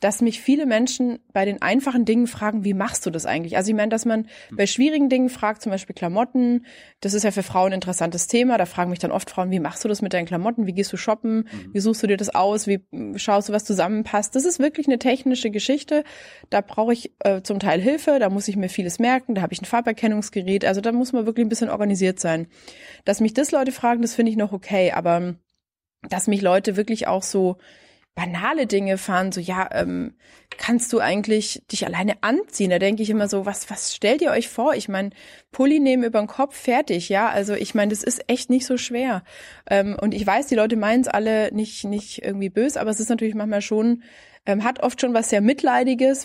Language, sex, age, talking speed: German, female, 20-39, 230 wpm